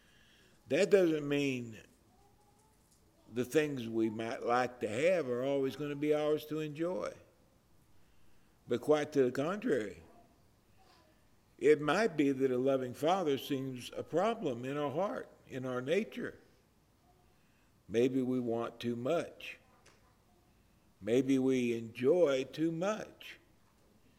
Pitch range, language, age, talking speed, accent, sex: 120-180 Hz, English, 50-69, 120 wpm, American, male